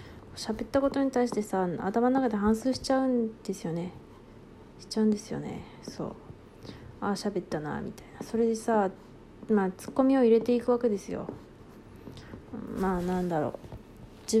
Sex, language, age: female, Japanese, 20-39